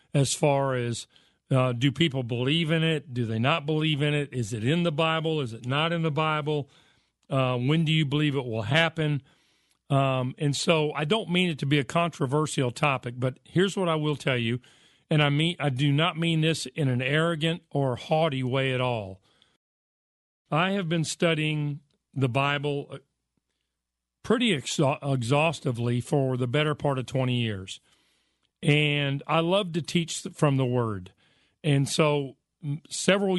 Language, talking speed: English, 170 wpm